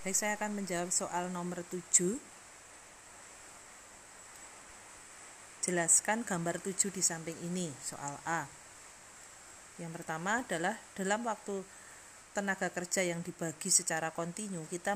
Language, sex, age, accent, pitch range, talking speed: Indonesian, female, 30-49, native, 175-210 Hz, 110 wpm